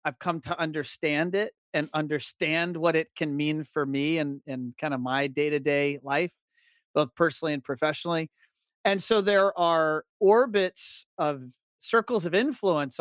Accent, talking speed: American, 150 wpm